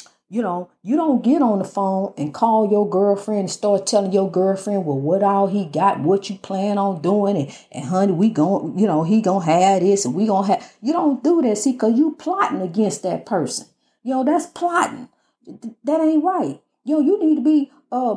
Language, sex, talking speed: English, female, 230 wpm